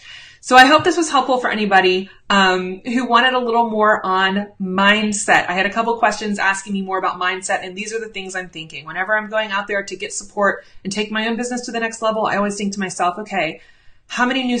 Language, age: English, 20-39